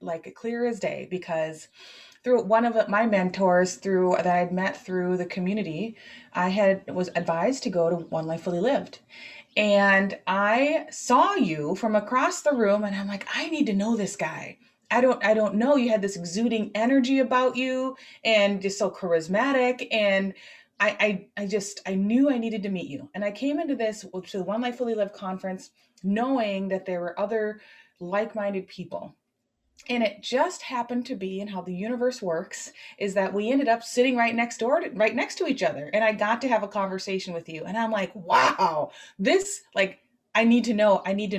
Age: 30-49